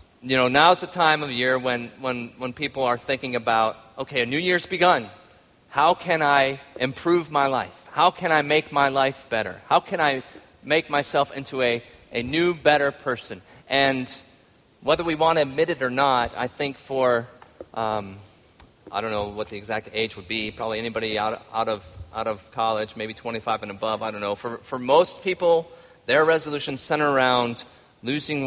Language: English